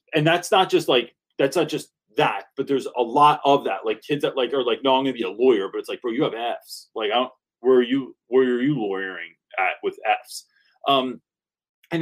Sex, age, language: male, 30-49, English